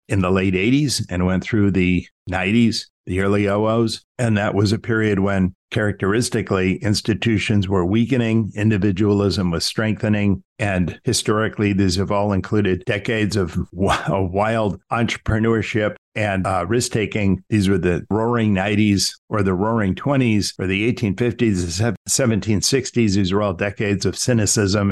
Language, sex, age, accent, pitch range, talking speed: English, male, 50-69, American, 95-115 Hz, 140 wpm